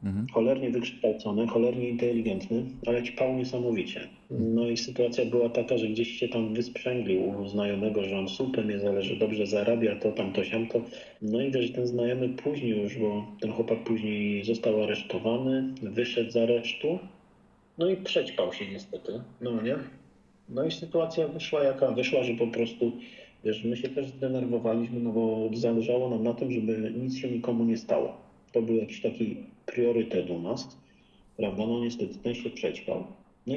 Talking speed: 165 wpm